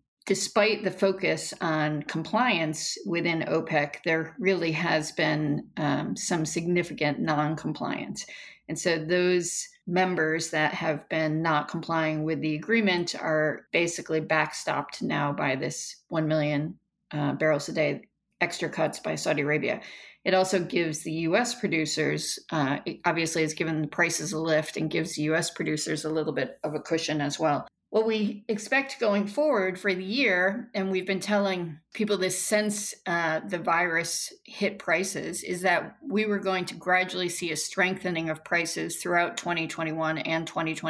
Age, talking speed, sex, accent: 40-59, 155 wpm, female, American